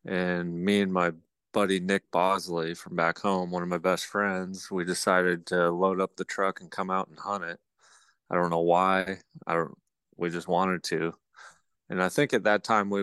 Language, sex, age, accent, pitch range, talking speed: English, male, 30-49, American, 85-95 Hz, 205 wpm